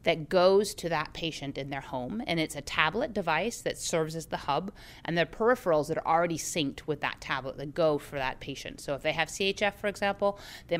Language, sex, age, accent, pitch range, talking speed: English, female, 30-49, American, 145-190 Hz, 230 wpm